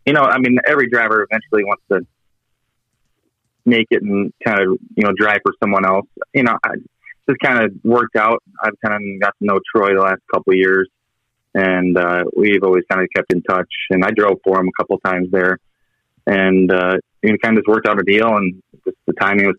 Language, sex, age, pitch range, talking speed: English, male, 20-39, 95-110 Hz, 225 wpm